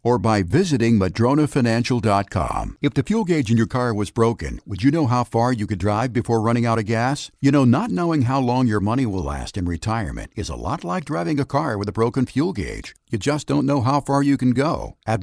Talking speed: 235 wpm